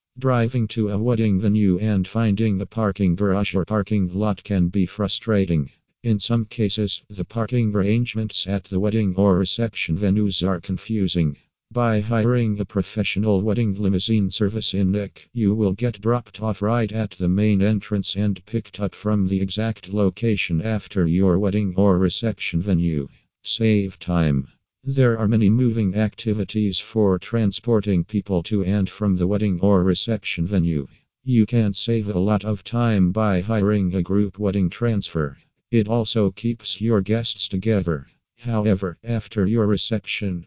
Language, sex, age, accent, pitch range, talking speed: English, male, 50-69, American, 95-110 Hz, 155 wpm